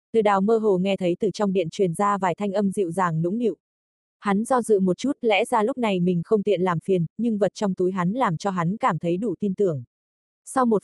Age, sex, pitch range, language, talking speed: 20-39, female, 180-225 Hz, Vietnamese, 260 wpm